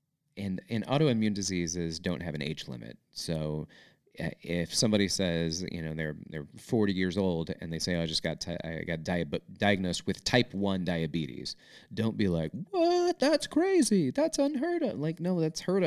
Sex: male